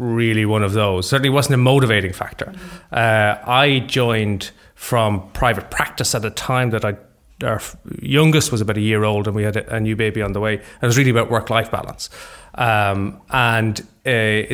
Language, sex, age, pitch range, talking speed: English, male, 30-49, 105-125 Hz, 195 wpm